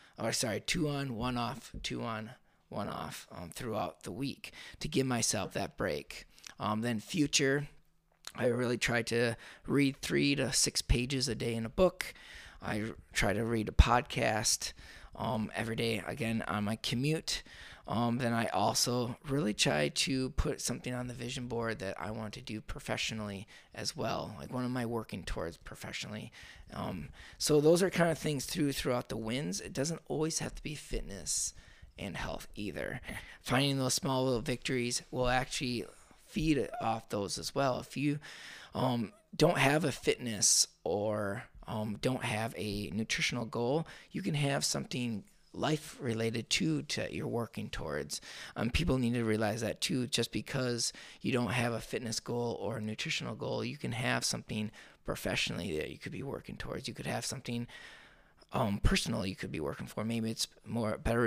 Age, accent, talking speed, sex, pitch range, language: 20-39, American, 175 wpm, male, 110-135 Hz, English